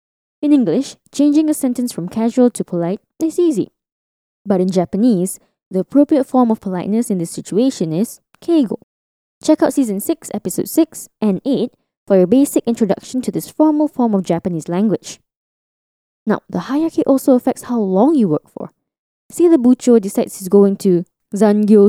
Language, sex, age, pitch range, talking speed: English, female, 10-29, 190-270 Hz, 165 wpm